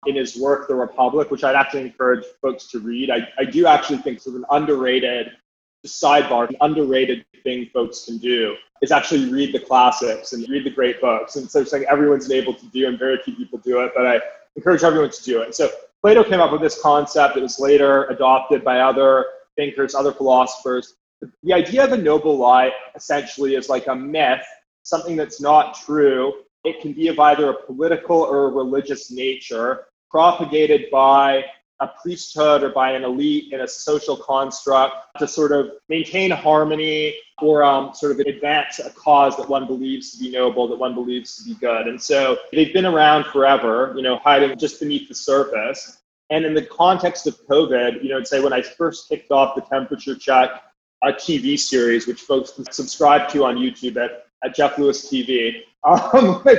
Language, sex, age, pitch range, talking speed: English, male, 20-39, 130-155 Hz, 195 wpm